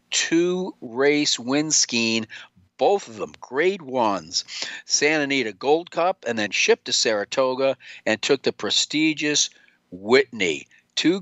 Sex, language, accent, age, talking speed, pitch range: male, English, American, 50-69, 125 wpm, 115-150 Hz